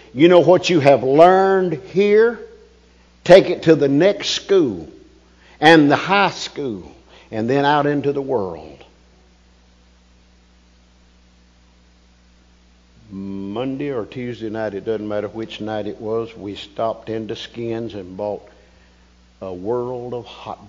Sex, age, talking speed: male, 50-69, 130 wpm